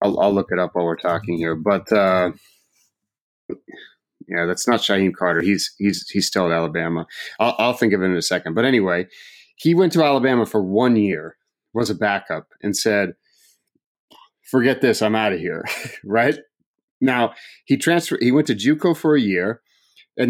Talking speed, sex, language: 185 wpm, male, English